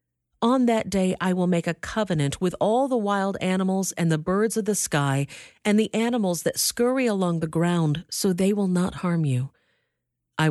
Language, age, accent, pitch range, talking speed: English, 50-69, American, 140-195 Hz, 195 wpm